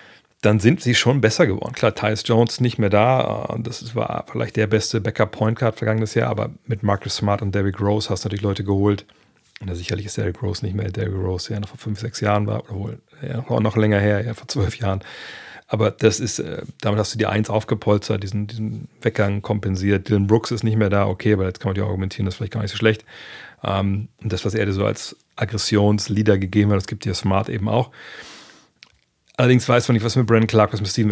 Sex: male